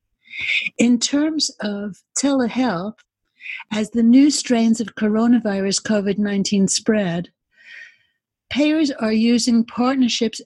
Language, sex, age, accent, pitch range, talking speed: English, female, 60-79, American, 205-250 Hz, 90 wpm